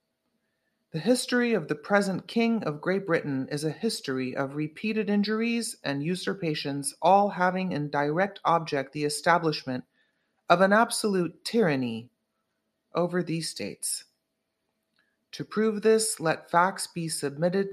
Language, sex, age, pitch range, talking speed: English, female, 40-59, 155-210 Hz, 130 wpm